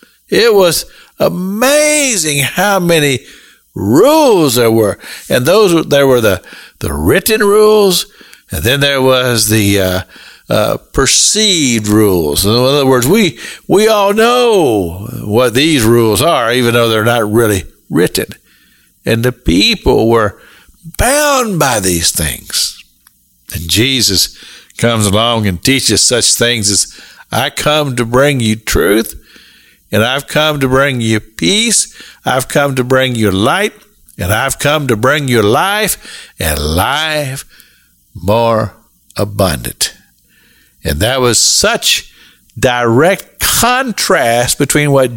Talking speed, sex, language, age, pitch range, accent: 130 wpm, male, English, 60-79, 105-150 Hz, American